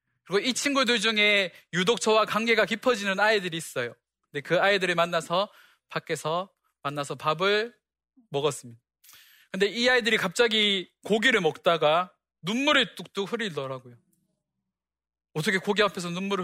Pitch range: 155-215 Hz